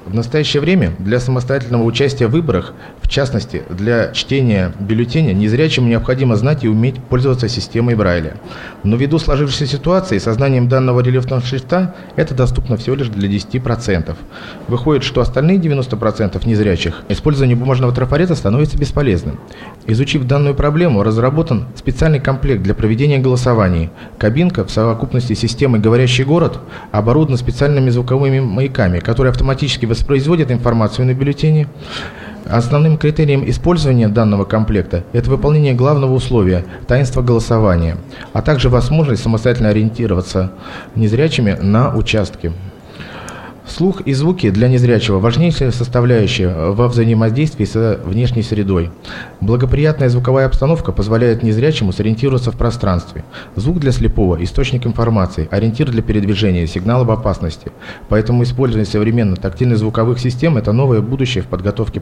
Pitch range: 105-135 Hz